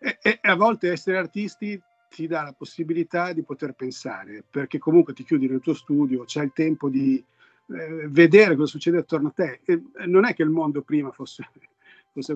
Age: 50-69